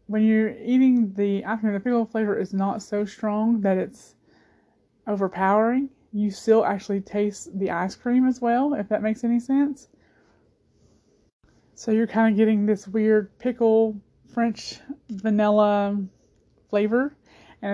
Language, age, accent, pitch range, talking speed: English, 20-39, American, 195-230 Hz, 140 wpm